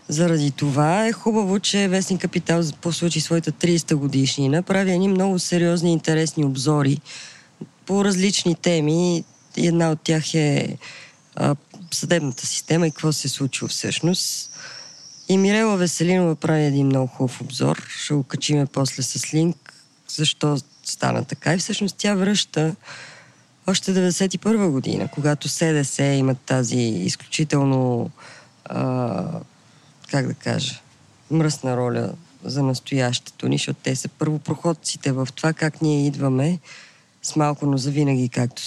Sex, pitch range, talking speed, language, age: female, 135-165 Hz, 130 wpm, Bulgarian, 20-39